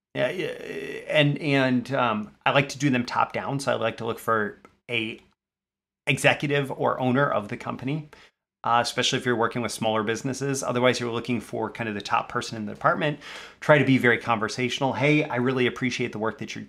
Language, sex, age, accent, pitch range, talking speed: English, male, 30-49, American, 120-150 Hz, 205 wpm